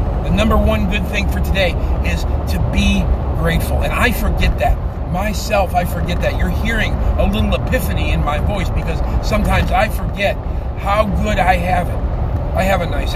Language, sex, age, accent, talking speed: English, male, 40-59, American, 180 wpm